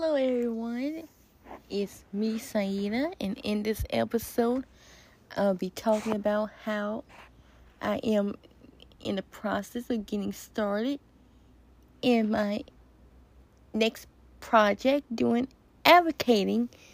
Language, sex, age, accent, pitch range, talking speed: English, female, 20-39, American, 205-245 Hz, 100 wpm